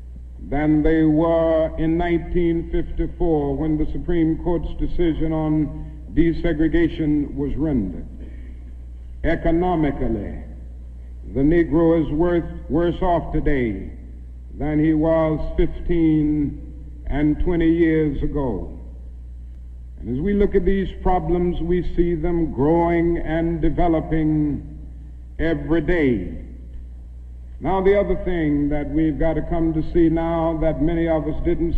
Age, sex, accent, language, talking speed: 60-79, male, American, English, 115 wpm